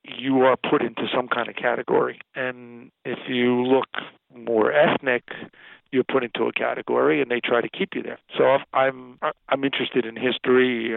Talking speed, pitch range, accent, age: 175 wpm, 115-135 Hz, American, 40-59